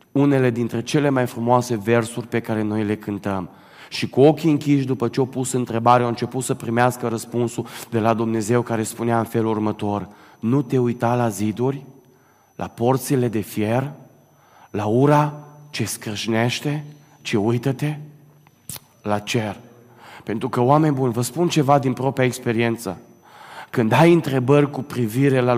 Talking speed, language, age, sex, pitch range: 155 wpm, Romanian, 30-49, male, 120-155 Hz